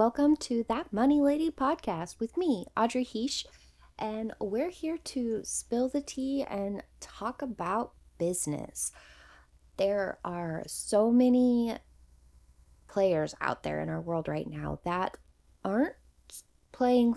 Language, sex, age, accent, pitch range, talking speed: English, female, 20-39, American, 165-245 Hz, 125 wpm